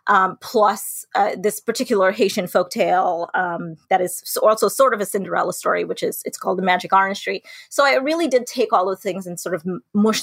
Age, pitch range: 30-49, 185-230 Hz